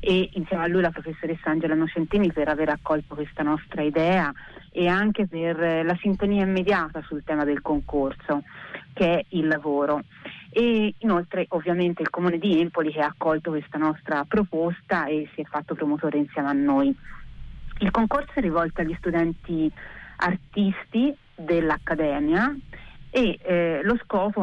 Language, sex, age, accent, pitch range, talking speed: Italian, female, 30-49, native, 155-195 Hz, 150 wpm